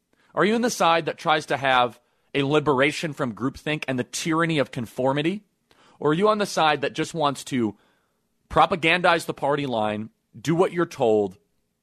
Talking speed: 185 wpm